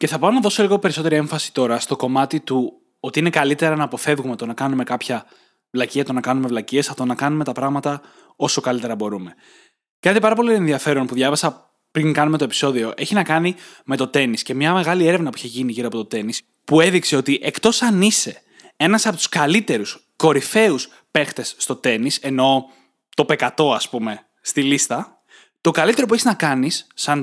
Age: 20-39